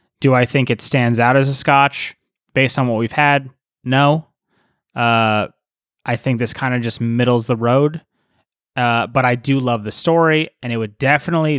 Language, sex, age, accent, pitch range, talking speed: English, male, 20-39, American, 120-140 Hz, 185 wpm